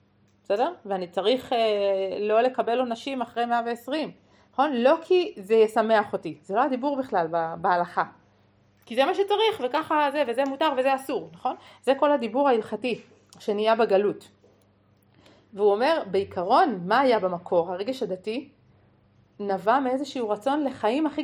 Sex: female